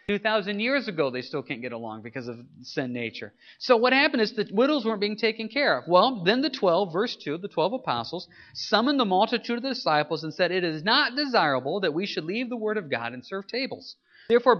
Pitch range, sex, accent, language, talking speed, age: 150-245 Hz, male, American, English, 230 wpm, 40-59